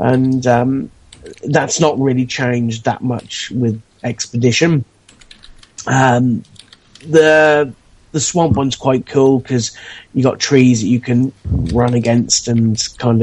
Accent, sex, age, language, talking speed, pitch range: British, male, 30-49, English, 125 wpm, 115-135 Hz